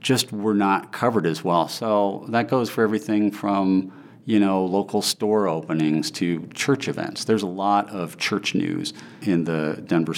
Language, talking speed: English, 170 wpm